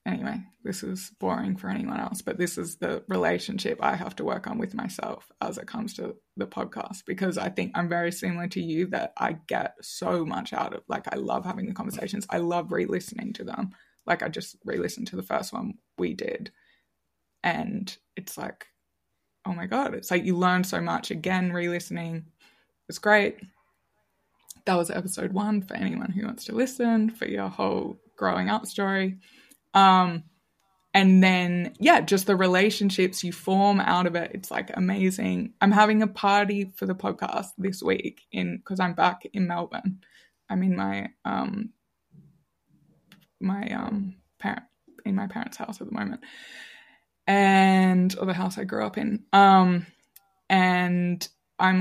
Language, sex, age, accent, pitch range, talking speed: English, female, 20-39, Australian, 180-215 Hz, 170 wpm